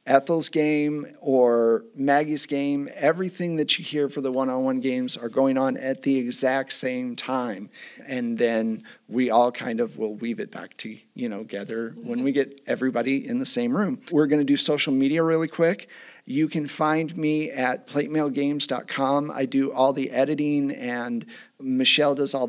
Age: 40-59